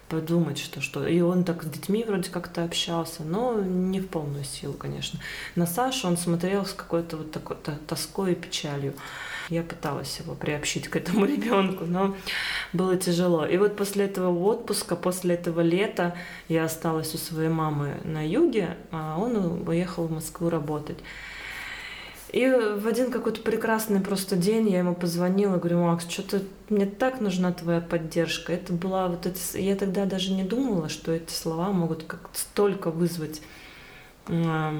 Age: 20-39